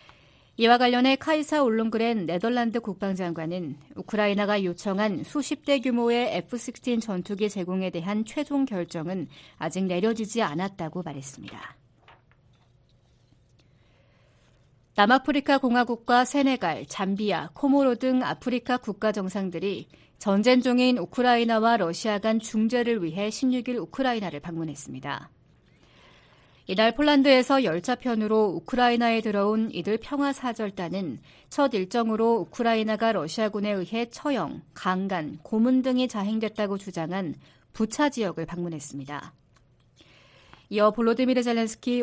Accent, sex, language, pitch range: native, female, Korean, 175-245 Hz